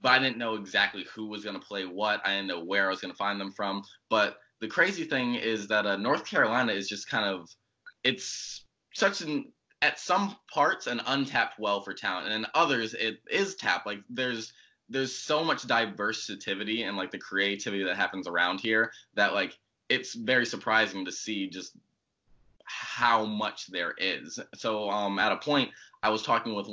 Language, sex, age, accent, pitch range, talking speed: English, male, 20-39, American, 90-110 Hz, 195 wpm